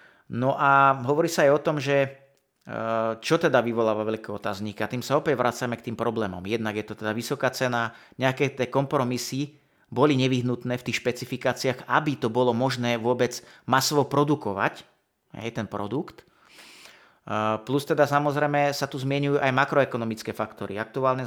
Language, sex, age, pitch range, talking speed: Slovak, male, 30-49, 115-140 Hz, 145 wpm